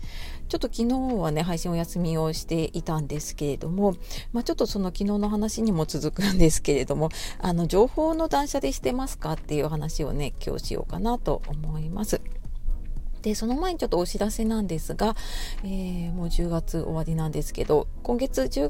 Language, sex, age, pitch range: Japanese, female, 40-59, 160-235 Hz